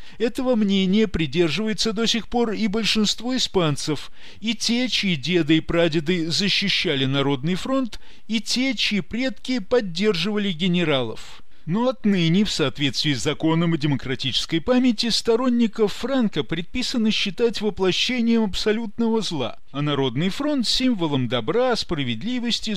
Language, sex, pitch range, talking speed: Russian, male, 170-245 Hz, 120 wpm